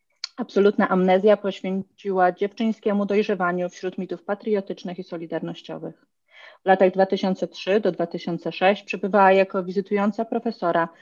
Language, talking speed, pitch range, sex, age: Polish, 105 wpm, 175-205 Hz, female, 30-49